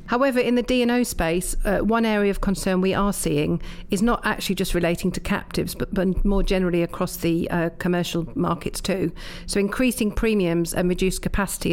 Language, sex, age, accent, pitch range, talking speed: English, female, 40-59, British, 175-200 Hz, 185 wpm